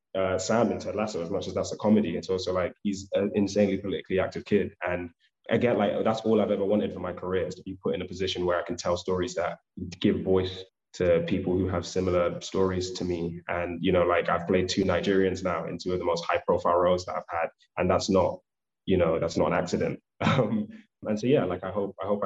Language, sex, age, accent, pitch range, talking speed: English, male, 20-39, British, 90-105 Hz, 245 wpm